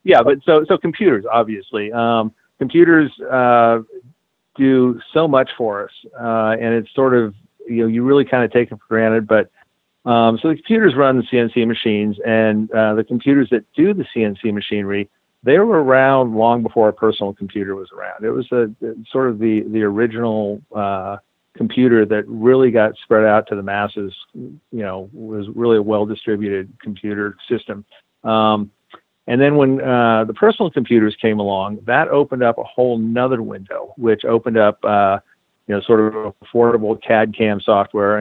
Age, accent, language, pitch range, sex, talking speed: 50-69, American, English, 105-120 Hz, male, 175 wpm